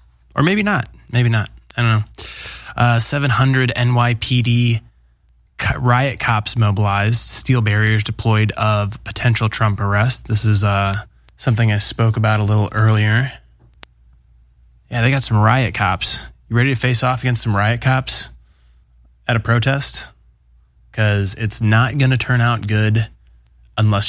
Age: 20-39